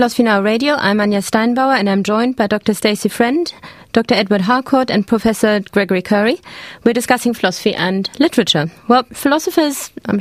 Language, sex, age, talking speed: English, female, 20-39, 165 wpm